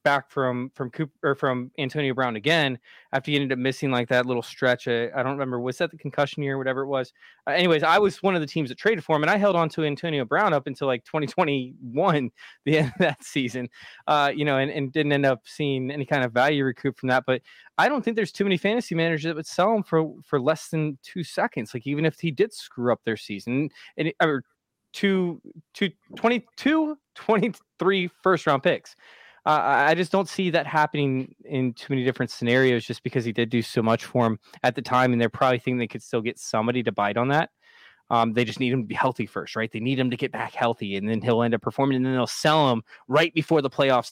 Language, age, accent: English, 20-39, American